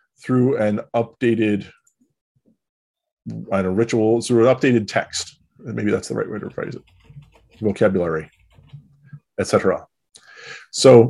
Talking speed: 125 wpm